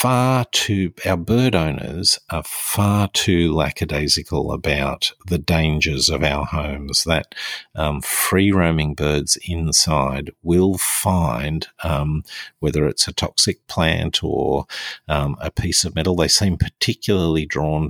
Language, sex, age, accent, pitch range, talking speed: English, male, 50-69, Australian, 75-85 Hz, 130 wpm